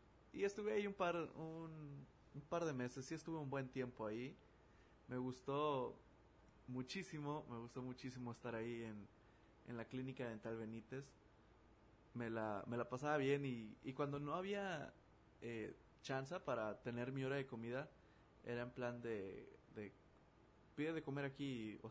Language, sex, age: Spanish, male, 20-39